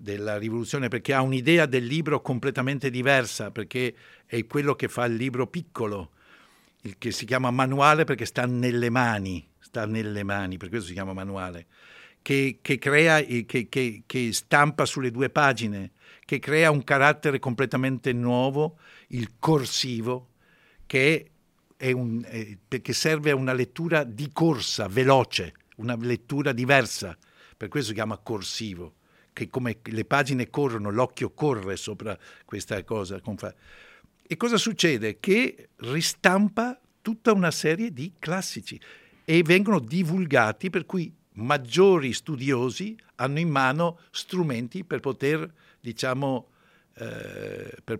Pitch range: 115-150 Hz